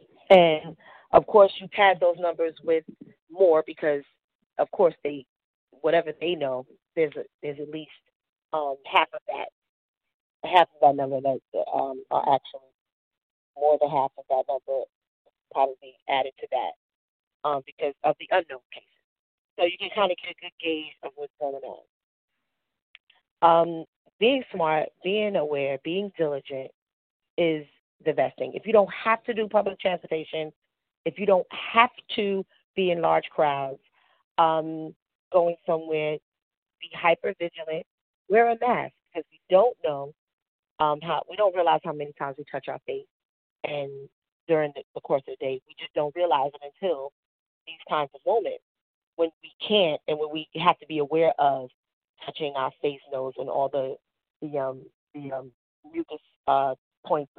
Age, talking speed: 40-59, 165 wpm